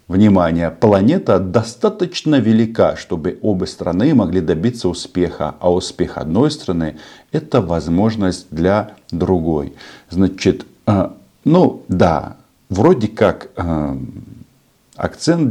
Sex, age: male, 50-69